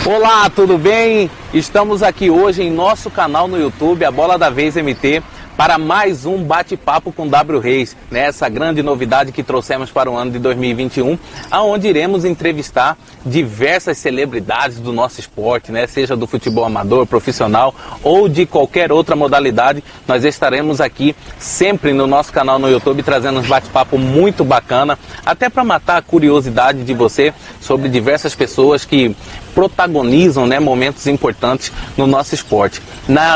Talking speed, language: 155 wpm, Portuguese